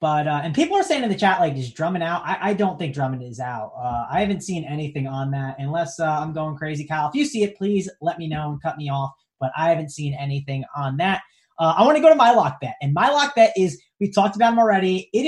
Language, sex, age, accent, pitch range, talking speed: English, male, 20-39, American, 150-200 Hz, 285 wpm